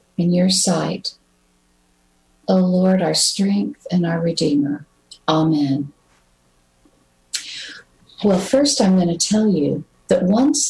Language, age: English, 50-69